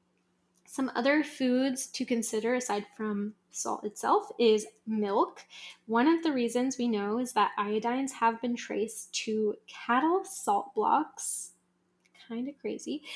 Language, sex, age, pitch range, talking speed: English, female, 10-29, 215-275 Hz, 135 wpm